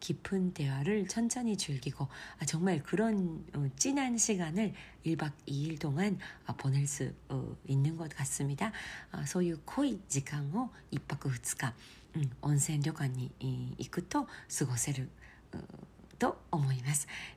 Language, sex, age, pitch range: Korean, female, 40-59, 140-195 Hz